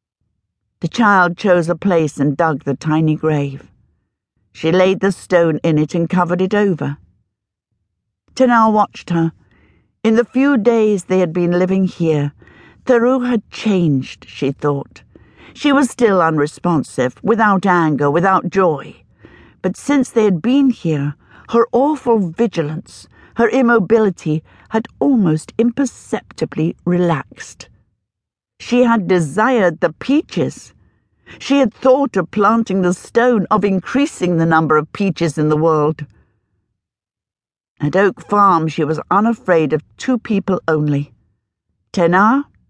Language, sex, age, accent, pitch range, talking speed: English, female, 60-79, British, 145-215 Hz, 130 wpm